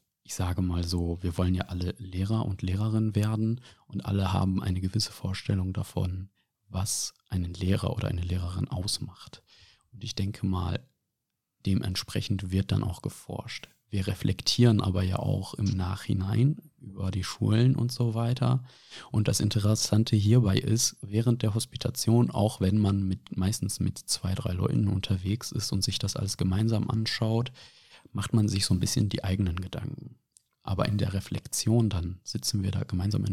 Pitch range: 95-115 Hz